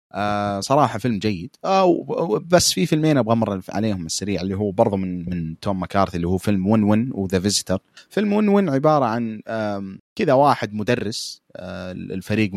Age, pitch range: 30-49, 95-125 Hz